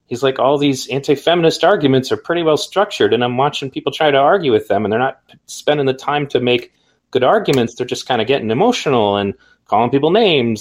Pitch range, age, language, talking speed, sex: 120-155 Hz, 30-49, English, 225 wpm, male